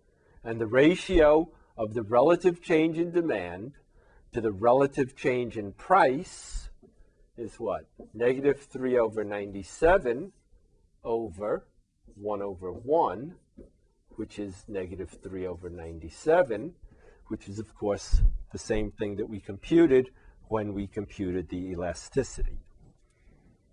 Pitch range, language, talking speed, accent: 100-135 Hz, English, 115 wpm, American